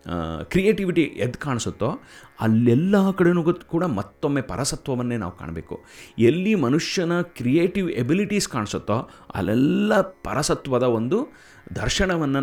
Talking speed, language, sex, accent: 90 wpm, Kannada, male, native